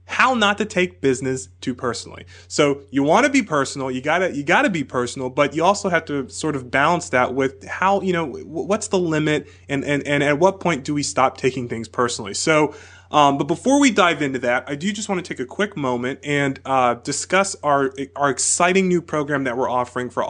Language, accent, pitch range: English, American, 125-175 Hz